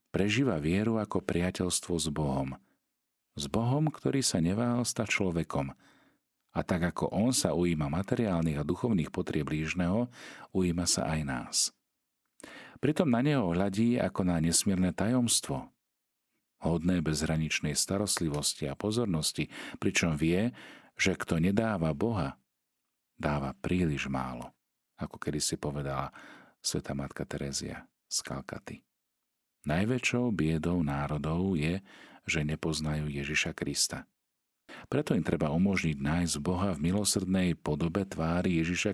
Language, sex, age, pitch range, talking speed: Slovak, male, 40-59, 75-100 Hz, 120 wpm